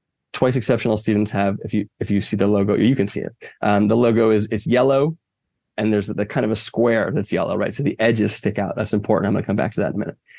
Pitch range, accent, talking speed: 105-115 Hz, American, 275 wpm